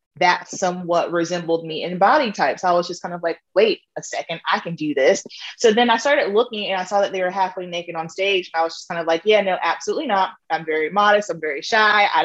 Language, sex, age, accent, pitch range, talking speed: English, female, 20-39, American, 170-215 Hz, 265 wpm